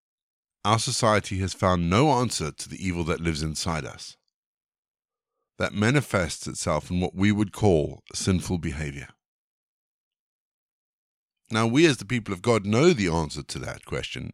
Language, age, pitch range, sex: English, 50-69, 90-125 Hz, male